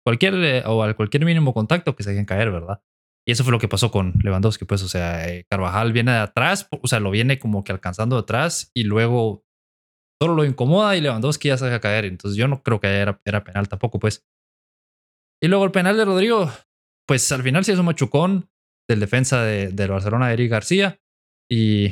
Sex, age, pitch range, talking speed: male, 20-39, 105-145 Hz, 215 wpm